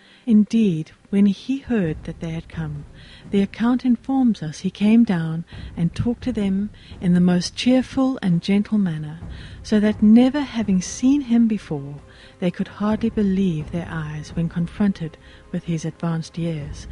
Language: English